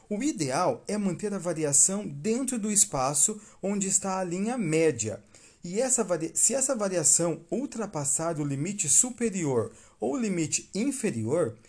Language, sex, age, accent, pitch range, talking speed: Portuguese, male, 40-59, Brazilian, 125-200 Hz, 135 wpm